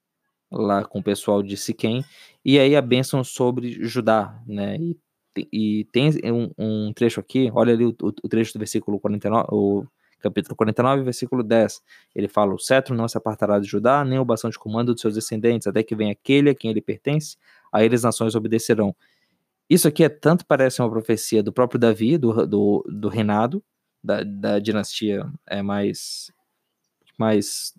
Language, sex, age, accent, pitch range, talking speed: Portuguese, male, 20-39, Brazilian, 110-130 Hz, 185 wpm